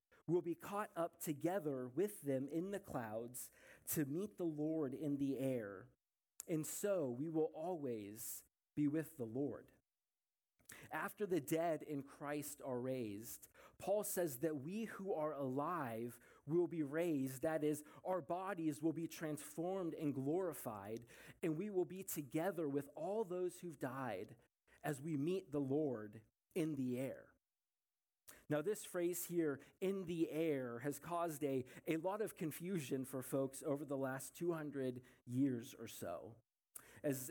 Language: English